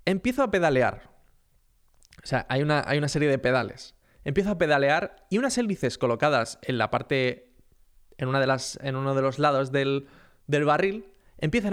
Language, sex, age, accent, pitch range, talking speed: Spanish, male, 20-39, Spanish, 130-175 Hz, 180 wpm